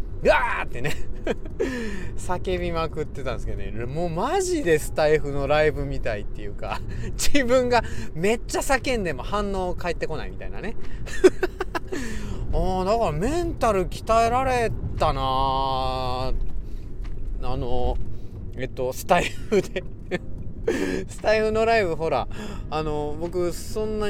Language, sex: Japanese, male